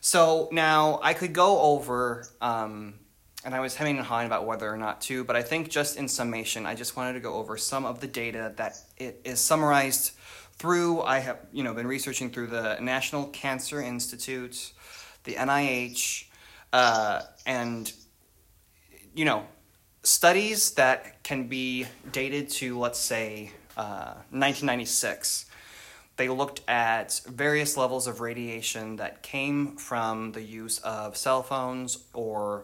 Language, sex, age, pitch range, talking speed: English, male, 20-39, 110-135 Hz, 150 wpm